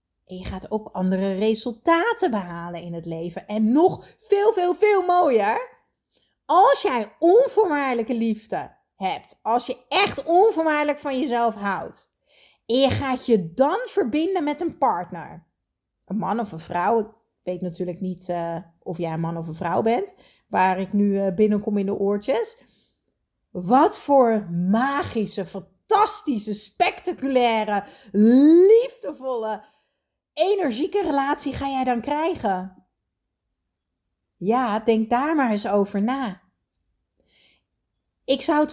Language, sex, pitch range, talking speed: Dutch, female, 190-285 Hz, 130 wpm